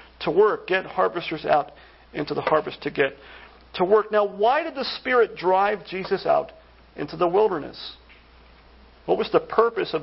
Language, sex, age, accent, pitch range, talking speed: English, male, 40-59, American, 155-210 Hz, 170 wpm